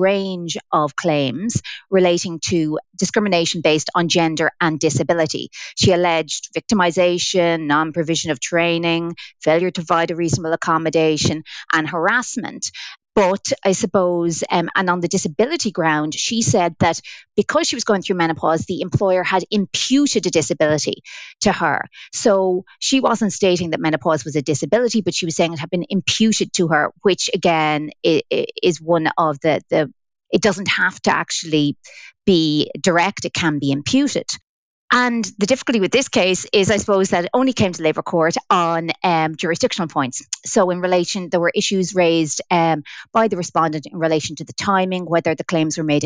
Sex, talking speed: female, 170 wpm